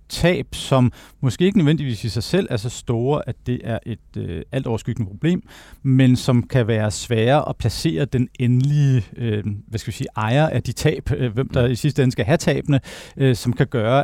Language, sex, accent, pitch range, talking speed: Danish, male, native, 115-135 Hz, 210 wpm